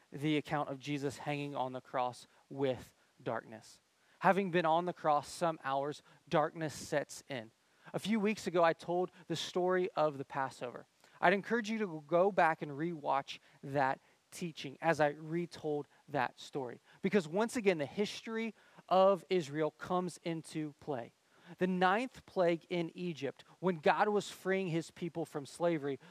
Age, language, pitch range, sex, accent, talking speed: 30-49, English, 140-180 Hz, male, American, 160 wpm